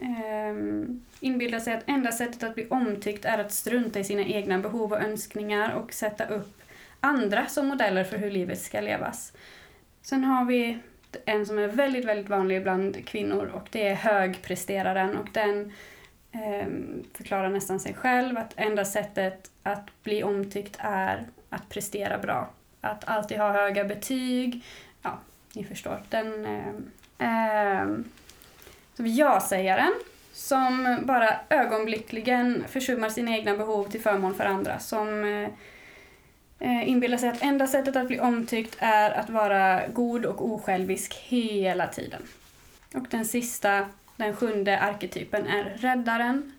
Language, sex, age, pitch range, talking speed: Swedish, female, 20-39, 200-240 Hz, 140 wpm